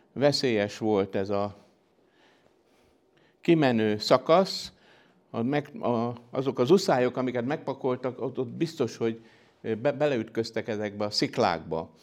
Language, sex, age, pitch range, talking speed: Hungarian, male, 60-79, 105-135 Hz, 115 wpm